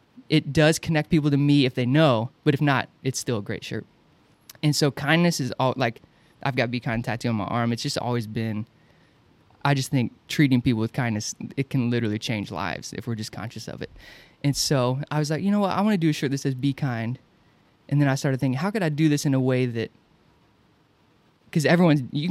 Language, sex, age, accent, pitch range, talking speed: English, male, 20-39, American, 120-150 Hz, 235 wpm